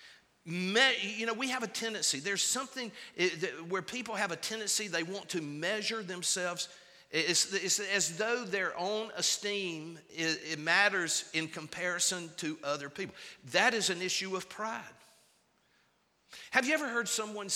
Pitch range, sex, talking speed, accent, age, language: 165-225 Hz, male, 135 wpm, American, 50-69, English